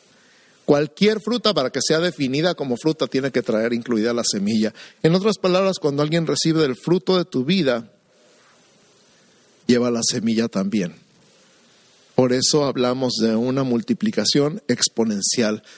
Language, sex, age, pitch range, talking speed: Spanish, male, 50-69, 120-175 Hz, 135 wpm